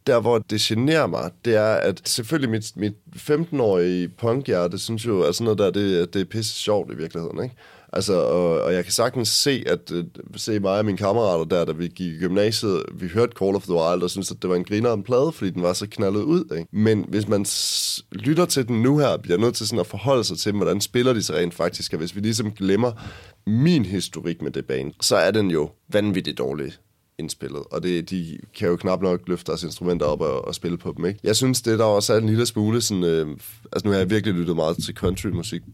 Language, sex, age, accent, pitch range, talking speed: Danish, male, 30-49, native, 90-115 Hz, 250 wpm